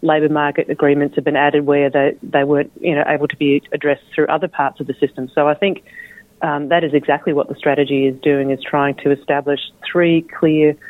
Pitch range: 135-165 Hz